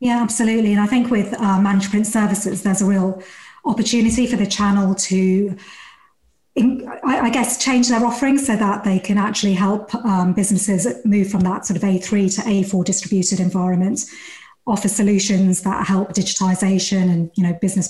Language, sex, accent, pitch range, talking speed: English, female, British, 190-220 Hz, 175 wpm